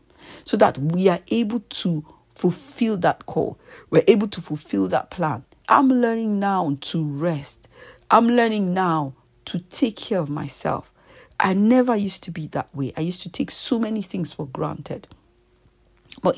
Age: 50-69